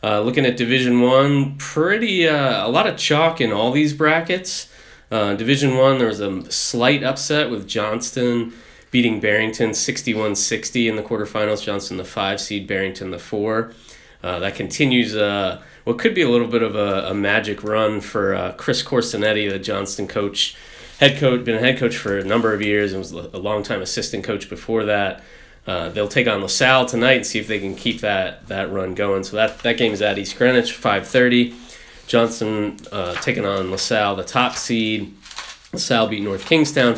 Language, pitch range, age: English, 100-130 Hz, 20-39